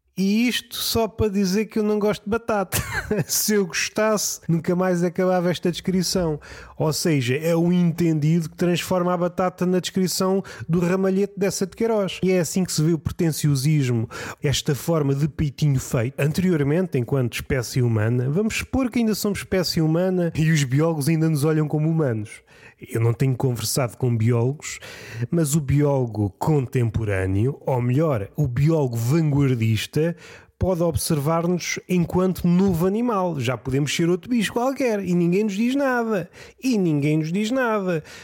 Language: Portuguese